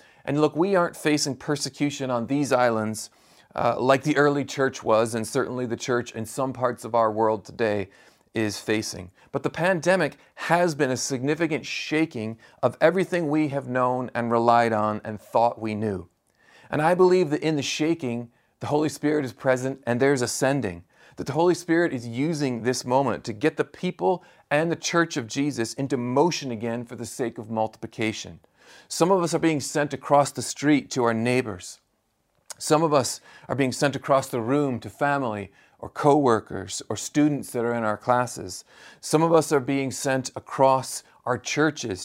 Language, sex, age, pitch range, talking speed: English, male, 40-59, 115-145 Hz, 185 wpm